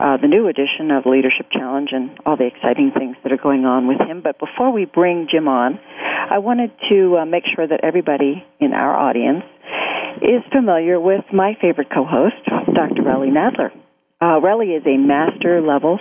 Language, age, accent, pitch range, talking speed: English, 50-69, American, 140-190 Hz, 185 wpm